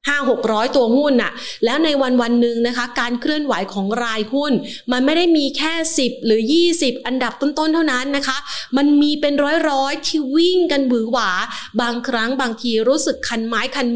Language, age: Thai, 30-49